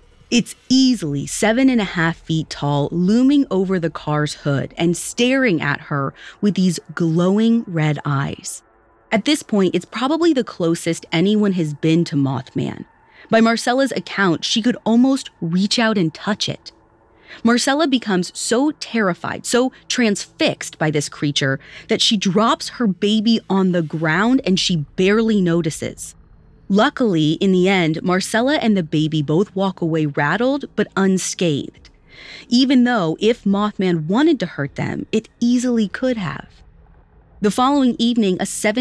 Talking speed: 150 wpm